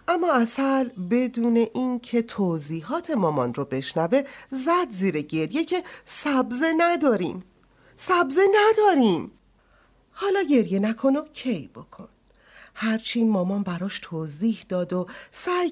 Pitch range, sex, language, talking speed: 180-275 Hz, female, Persian, 115 wpm